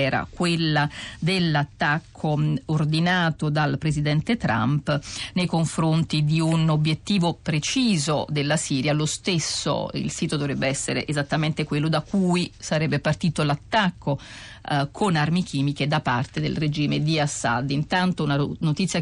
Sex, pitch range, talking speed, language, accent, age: female, 145-165 Hz, 130 wpm, Italian, native, 40-59